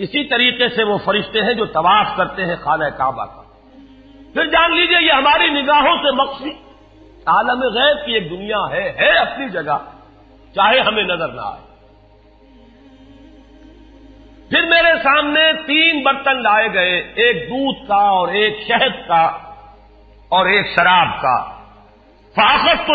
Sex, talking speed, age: male, 140 wpm, 50-69